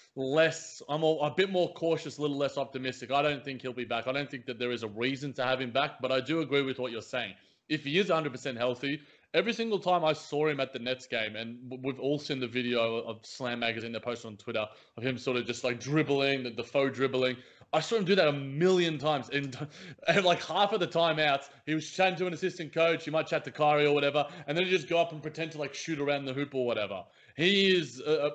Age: 20-39